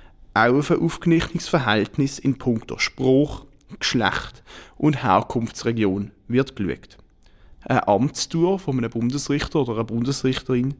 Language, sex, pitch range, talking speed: German, male, 110-145 Hz, 105 wpm